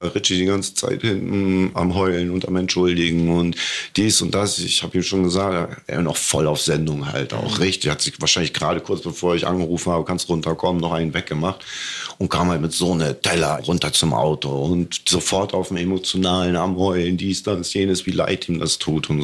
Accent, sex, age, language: German, male, 50-69, German